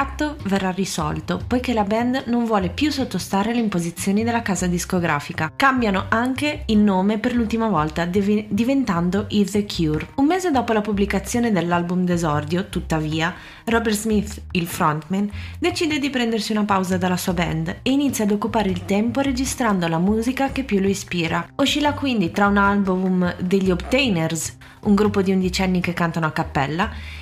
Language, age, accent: Italian, 20-39, native